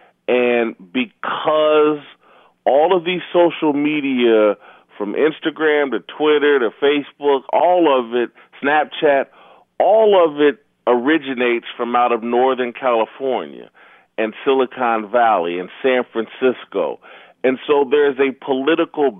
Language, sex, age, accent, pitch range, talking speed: English, male, 40-59, American, 115-135 Hz, 120 wpm